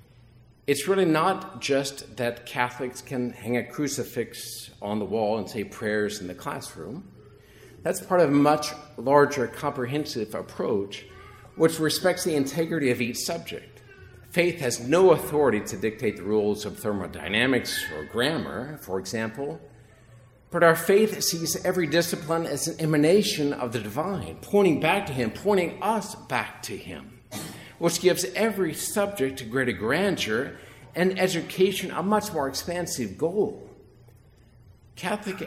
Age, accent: 50-69, American